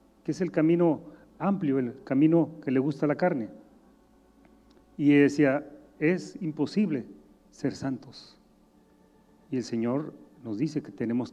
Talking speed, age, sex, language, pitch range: 130 wpm, 40-59, male, Spanish, 105-160 Hz